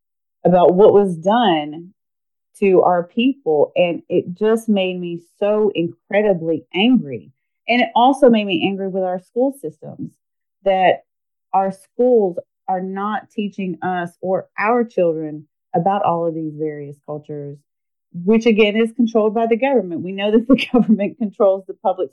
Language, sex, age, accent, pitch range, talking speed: English, female, 30-49, American, 165-215 Hz, 150 wpm